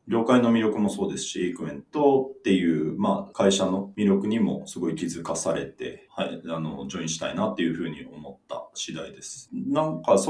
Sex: male